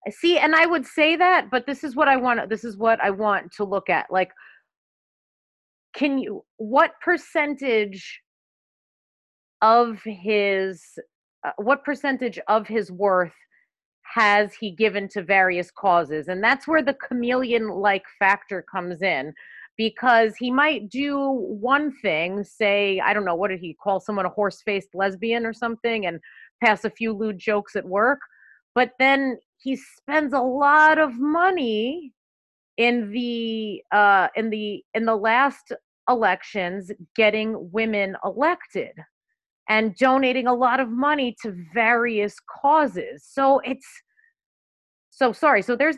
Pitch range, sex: 205-275 Hz, female